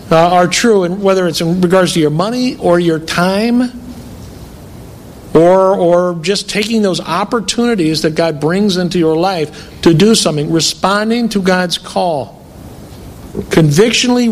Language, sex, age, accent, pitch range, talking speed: English, male, 50-69, American, 180-230 Hz, 140 wpm